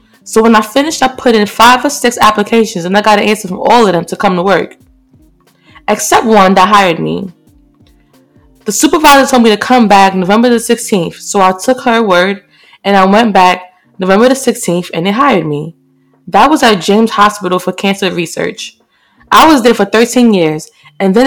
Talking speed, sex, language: 200 wpm, female, English